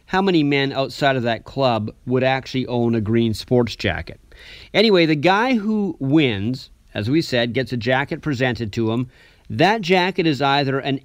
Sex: male